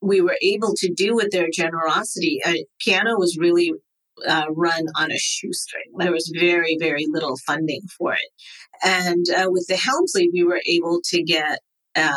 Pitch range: 165-185 Hz